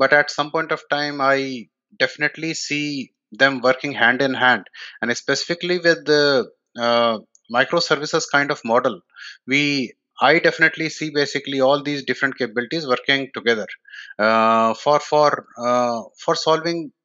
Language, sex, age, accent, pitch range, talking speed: English, male, 30-49, Indian, 115-145 Hz, 140 wpm